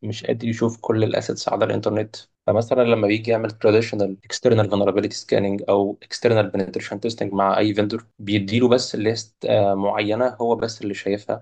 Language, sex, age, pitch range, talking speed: English, male, 20-39, 100-115 Hz, 160 wpm